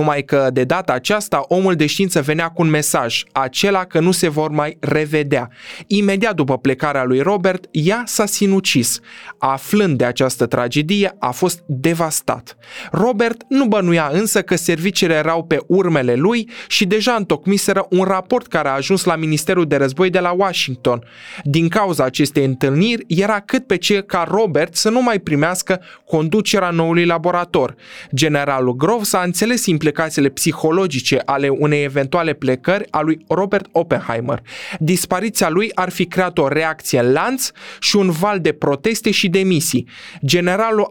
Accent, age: native, 20-39